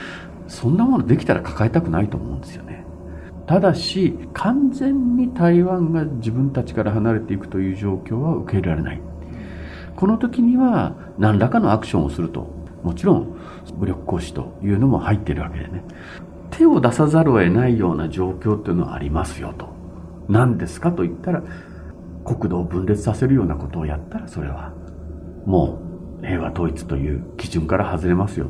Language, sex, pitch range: Japanese, male, 85-130 Hz